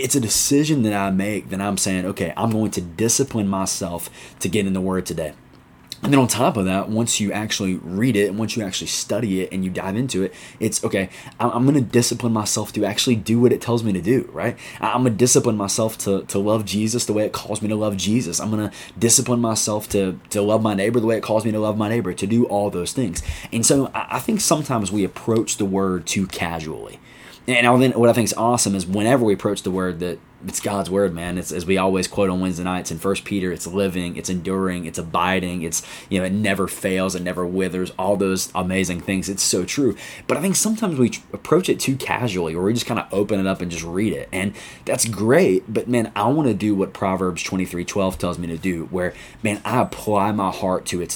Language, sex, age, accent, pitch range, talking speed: English, male, 20-39, American, 95-115 Hz, 245 wpm